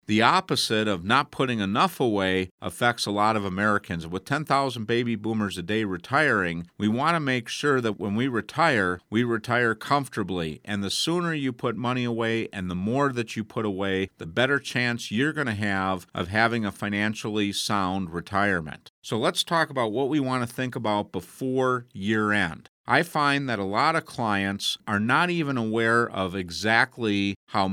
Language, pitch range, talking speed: English, 100-130 Hz, 185 wpm